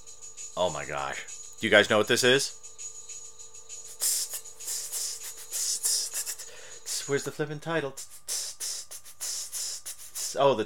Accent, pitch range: American, 100-165 Hz